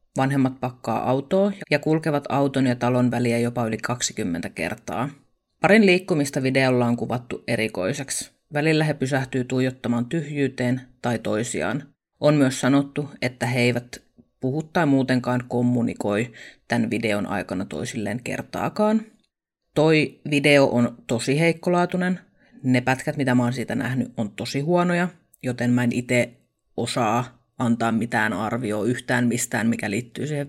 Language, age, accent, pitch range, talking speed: Finnish, 30-49, native, 120-155 Hz, 135 wpm